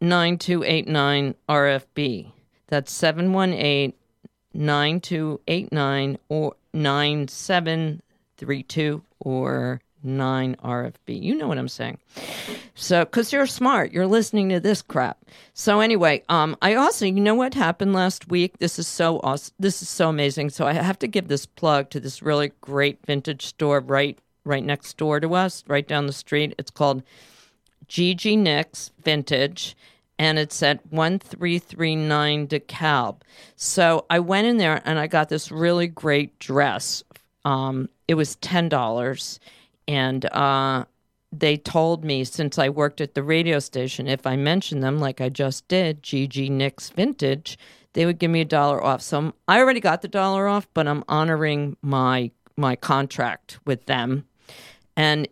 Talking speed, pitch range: 160 wpm, 140-175 Hz